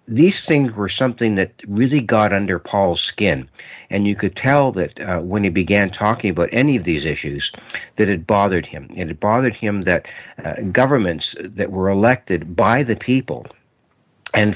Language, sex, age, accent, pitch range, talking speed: English, male, 60-79, American, 85-110 Hz, 175 wpm